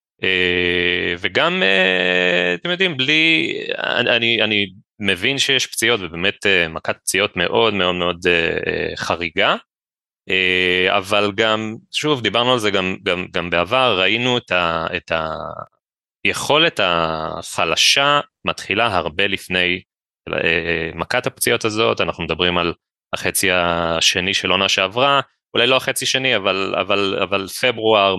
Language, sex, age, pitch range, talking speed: Hebrew, male, 30-49, 90-120 Hz, 115 wpm